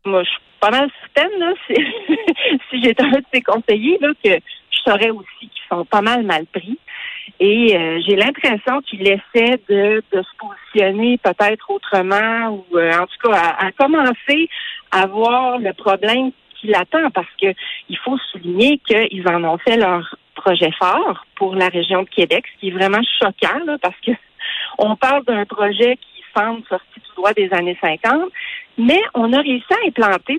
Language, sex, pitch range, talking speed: French, female, 190-265 Hz, 180 wpm